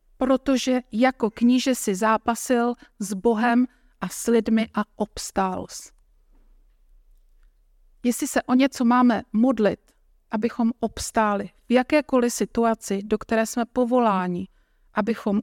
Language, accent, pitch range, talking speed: Czech, native, 225-275 Hz, 110 wpm